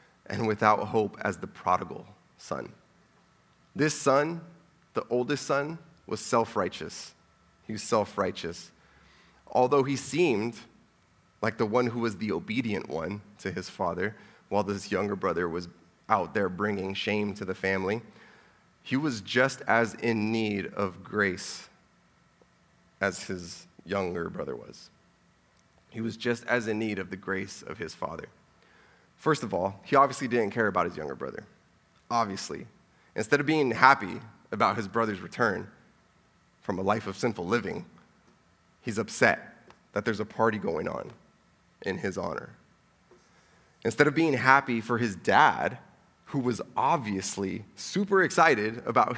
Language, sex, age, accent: English, male, 30-49, American